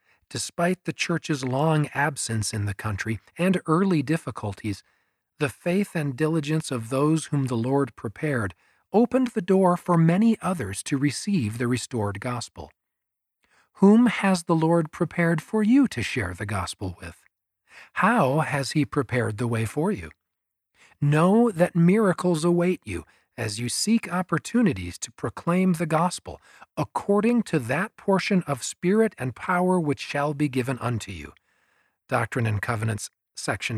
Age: 40-59